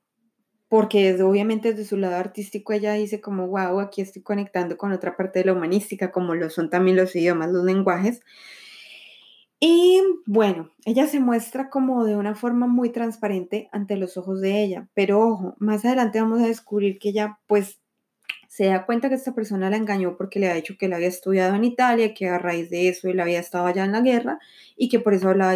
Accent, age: Colombian, 20-39